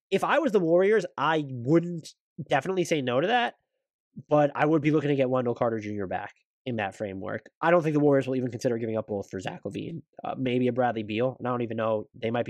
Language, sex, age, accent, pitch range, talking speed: English, male, 20-39, American, 105-145 Hz, 250 wpm